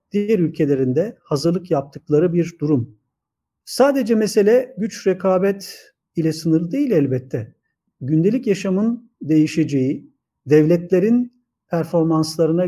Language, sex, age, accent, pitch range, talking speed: Turkish, male, 50-69, native, 140-185 Hz, 90 wpm